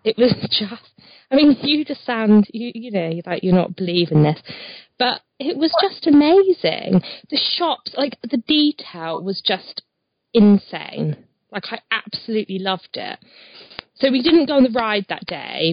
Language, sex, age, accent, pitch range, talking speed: English, female, 20-39, British, 185-235 Hz, 170 wpm